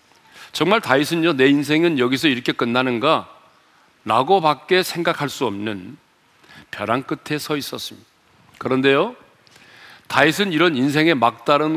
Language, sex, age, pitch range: Korean, male, 40-59, 125-170 Hz